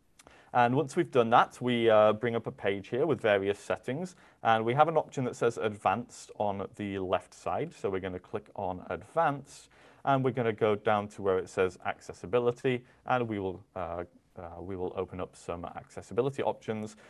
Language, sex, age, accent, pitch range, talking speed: English, male, 30-49, British, 95-130 Hz, 195 wpm